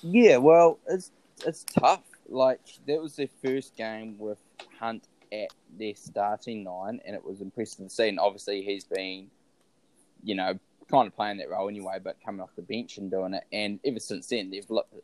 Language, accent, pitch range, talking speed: English, Australian, 100-130 Hz, 195 wpm